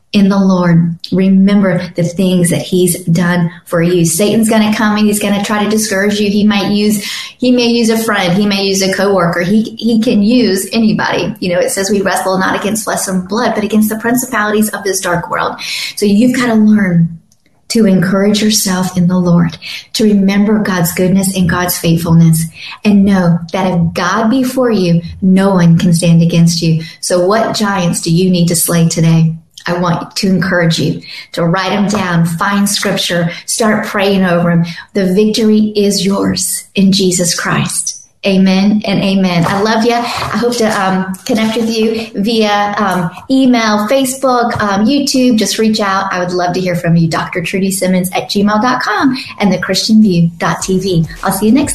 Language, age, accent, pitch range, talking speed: English, 40-59, American, 175-215 Hz, 190 wpm